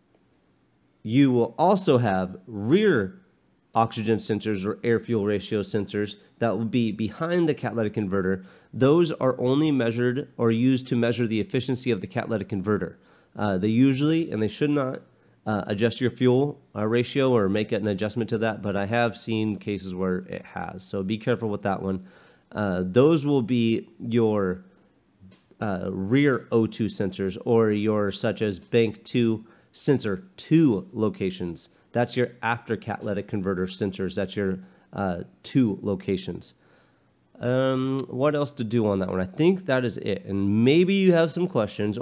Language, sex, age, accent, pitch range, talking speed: English, male, 30-49, American, 105-130 Hz, 160 wpm